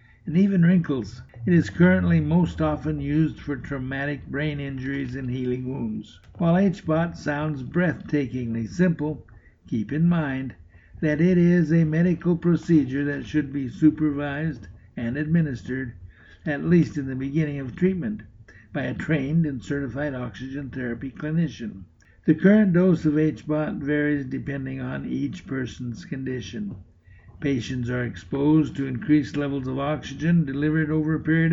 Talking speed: 140 wpm